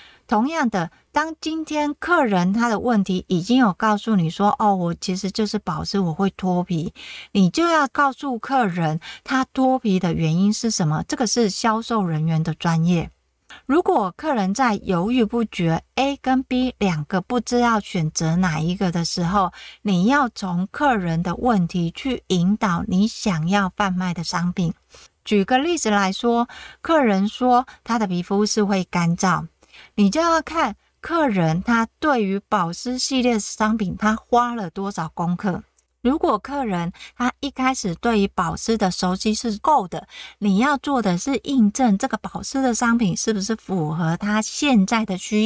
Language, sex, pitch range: Chinese, female, 185-245 Hz